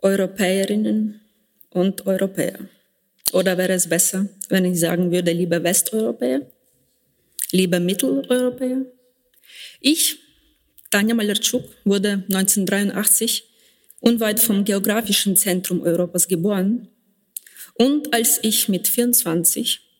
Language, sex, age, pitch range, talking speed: German, female, 20-39, 180-225 Hz, 95 wpm